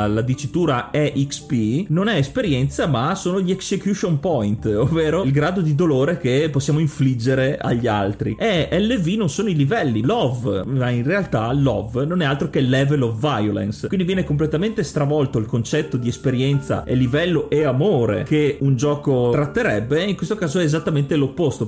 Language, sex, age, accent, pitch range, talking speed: Italian, male, 30-49, native, 125-165 Hz, 170 wpm